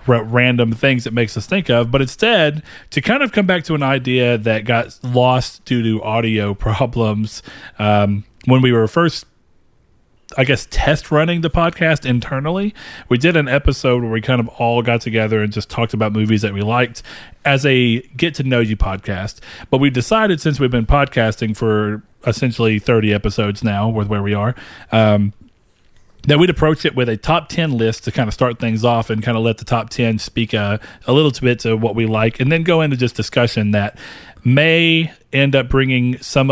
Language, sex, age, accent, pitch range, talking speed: English, male, 30-49, American, 110-135 Hz, 200 wpm